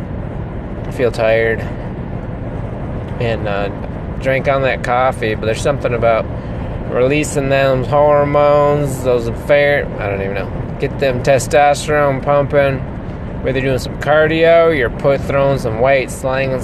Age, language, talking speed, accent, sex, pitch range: 20-39, English, 135 wpm, American, male, 115-150 Hz